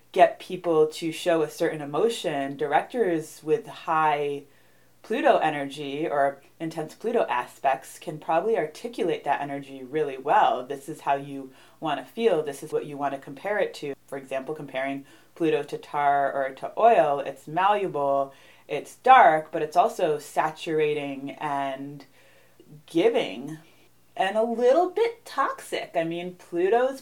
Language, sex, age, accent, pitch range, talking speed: English, female, 30-49, American, 145-200 Hz, 145 wpm